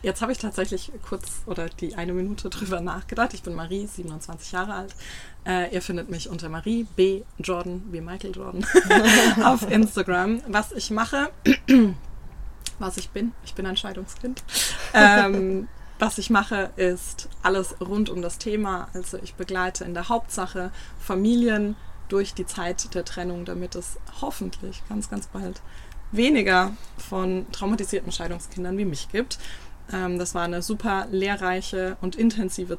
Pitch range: 175-210 Hz